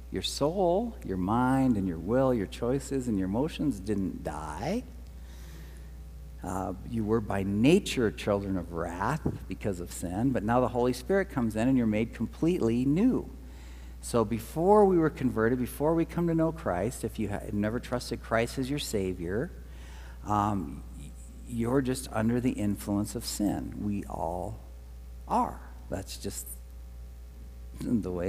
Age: 50-69